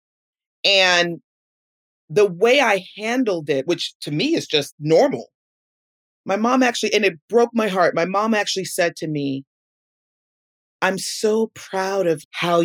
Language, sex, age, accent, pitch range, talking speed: English, female, 30-49, American, 140-195 Hz, 145 wpm